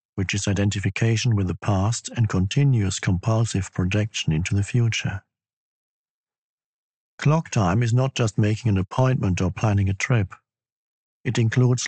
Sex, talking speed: male, 135 wpm